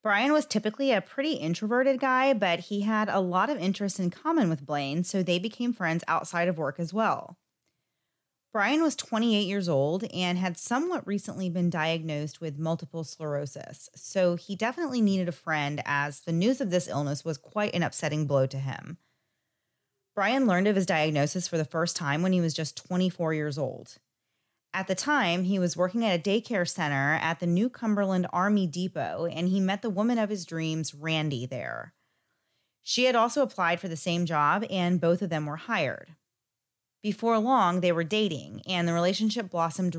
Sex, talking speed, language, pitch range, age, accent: female, 190 wpm, English, 155-205 Hz, 30-49, American